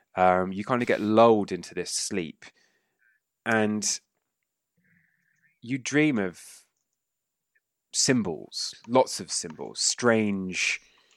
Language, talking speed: English, 95 wpm